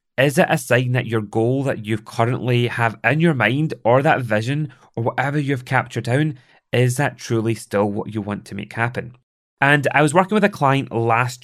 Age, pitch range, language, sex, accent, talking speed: 30-49, 115-135 Hz, English, male, British, 210 wpm